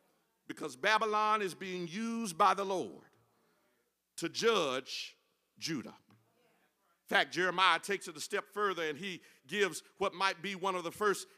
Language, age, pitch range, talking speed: English, 50-69, 180-225 Hz, 155 wpm